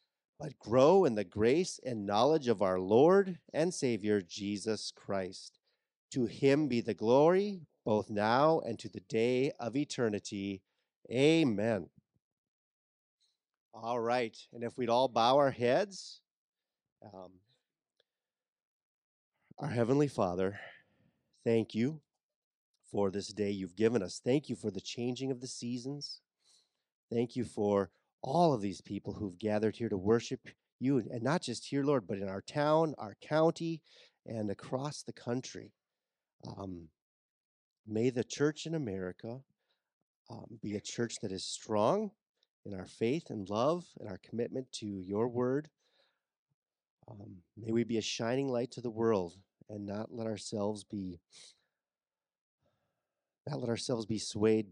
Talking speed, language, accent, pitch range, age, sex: 140 wpm, English, American, 105-135 Hz, 30-49, male